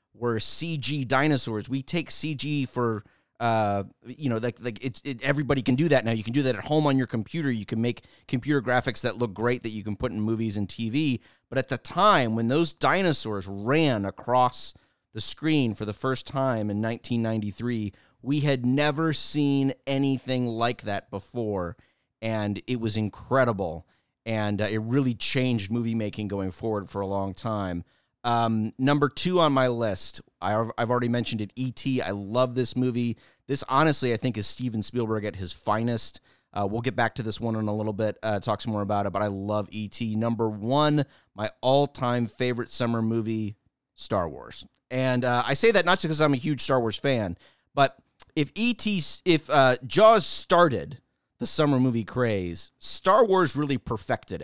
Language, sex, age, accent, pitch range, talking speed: English, male, 30-49, American, 110-135 Hz, 190 wpm